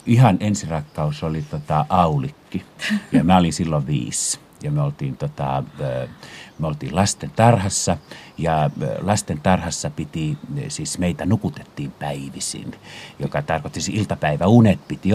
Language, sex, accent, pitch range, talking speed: Finnish, male, native, 80-120 Hz, 120 wpm